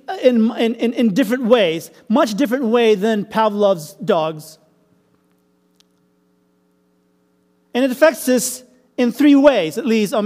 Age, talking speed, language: 40-59, 125 wpm, English